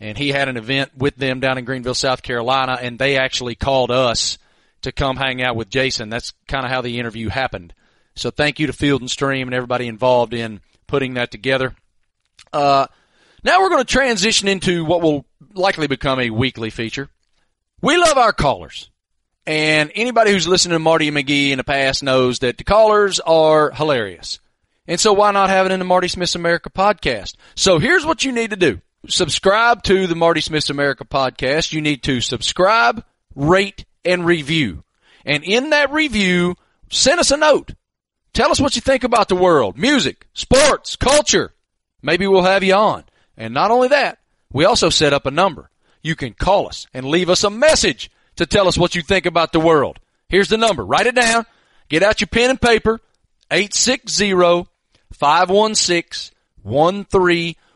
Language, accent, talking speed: English, American, 185 wpm